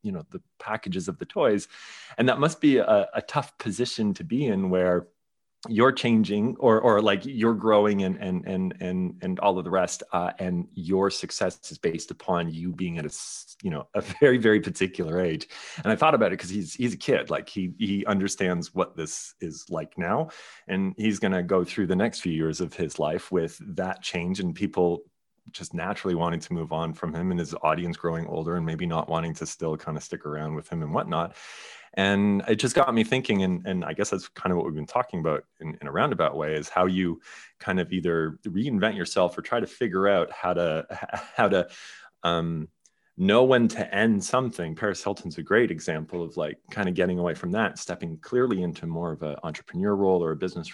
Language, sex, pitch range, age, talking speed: English, male, 85-105 Hz, 30-49, 220 wpm